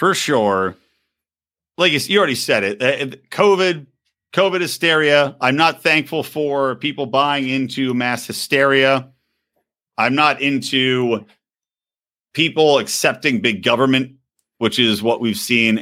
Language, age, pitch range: English, 50-69, 110-170 Hz